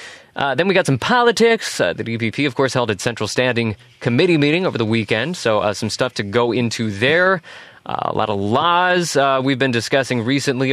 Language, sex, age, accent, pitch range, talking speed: English, male, 20-39, American, 115-165 Hz, 215 wpm